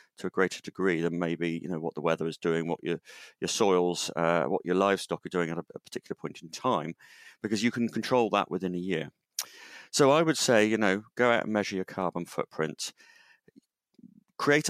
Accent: British